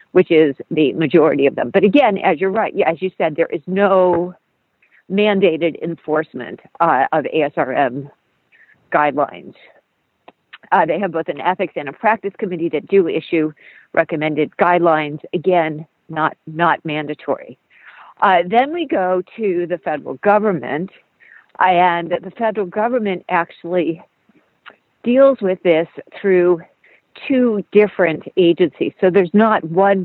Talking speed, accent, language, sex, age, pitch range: 135 wpm, American, English, female, 50-69, 160-200 Hz